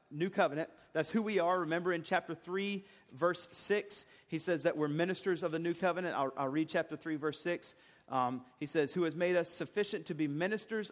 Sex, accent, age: male, American, 40-59